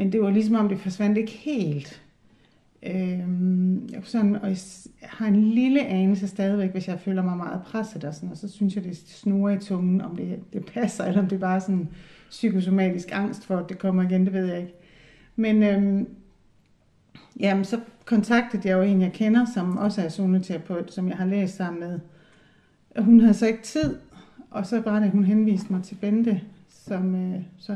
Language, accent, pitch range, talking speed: Danish, native, 185-220 Hz, 205 wpm